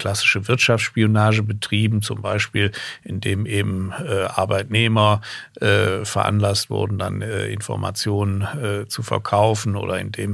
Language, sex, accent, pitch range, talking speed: German, male, German, 105-115 Hz, 115 wpm